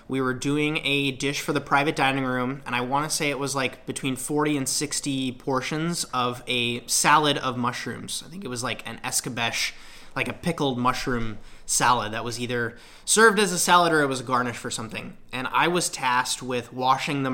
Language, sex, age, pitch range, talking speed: English, male, 20-39, 125-155 Hz, 210 wpm